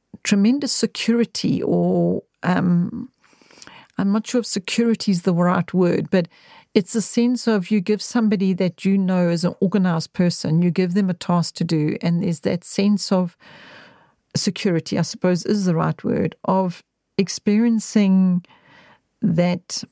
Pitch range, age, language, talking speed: 175-215 Hz, 50-69, English, 150 wpm